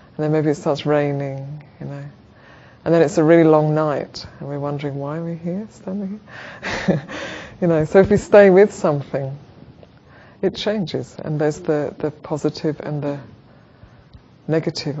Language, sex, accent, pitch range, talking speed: English, female, British, 140-160 Hz, 165 wpm